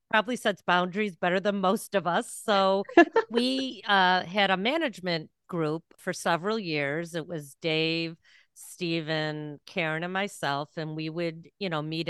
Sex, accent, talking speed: female, American, 155 wpm